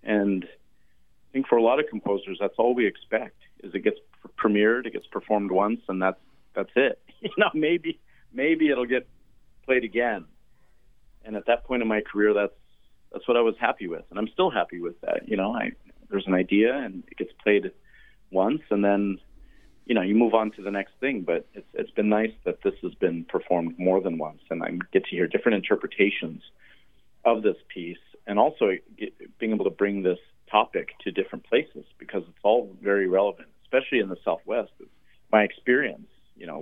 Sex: male